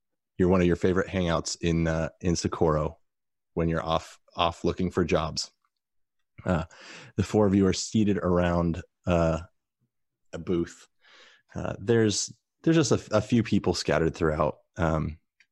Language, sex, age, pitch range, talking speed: English, male, 30-49, 85-100 Hz, 145 wpm